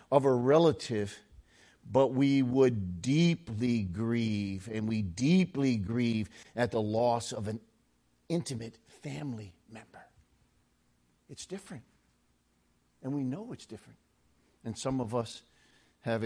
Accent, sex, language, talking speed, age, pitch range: American, male, English, 120 wpm, 50-69, 90-130 Hz